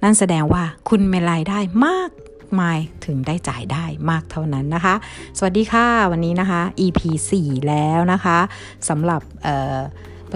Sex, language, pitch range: female, Thai, 150-195 Hz